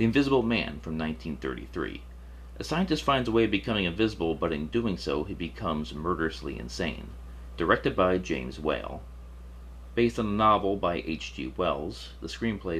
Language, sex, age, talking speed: English, male, 30-49, 160 wpm